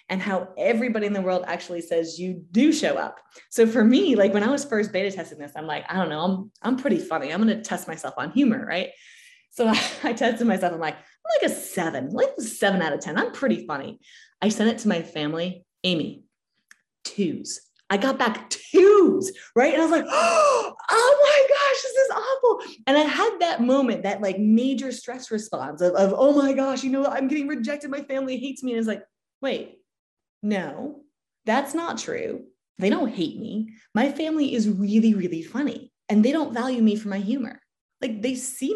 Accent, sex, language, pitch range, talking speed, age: American, female, English, 195-280 Hz, 210 wpm, 20-39